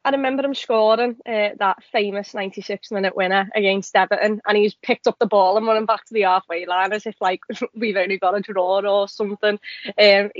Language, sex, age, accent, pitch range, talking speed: English, female, 20-39, British, 190-220 Hz, 210 wpm